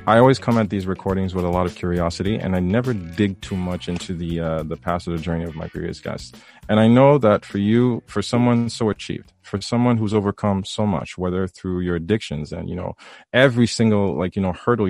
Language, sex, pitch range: English, male, 95-130 Hz